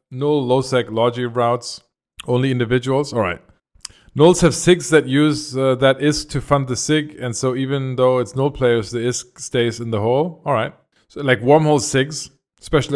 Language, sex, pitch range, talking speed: English, male, 120-150 Hz, 190 wpm